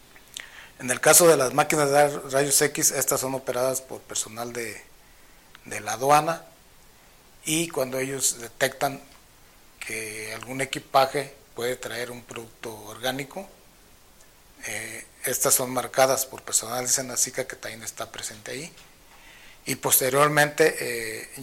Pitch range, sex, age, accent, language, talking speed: 120-140 Hz, male, 40-59, Mexican, Spanish, 130 wpm